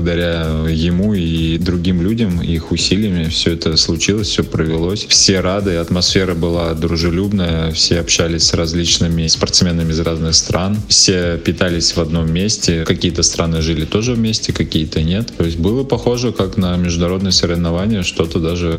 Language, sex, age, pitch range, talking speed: Russian, male, 20-39, 85-100 Hz, 150 wpm